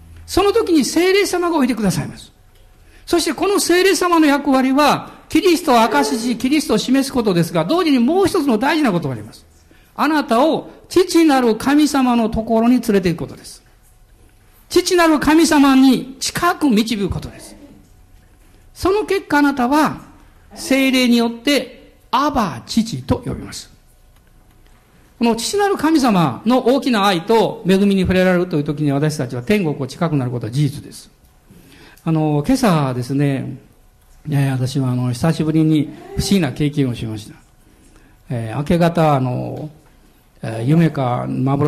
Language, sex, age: Japanese, male, 50-69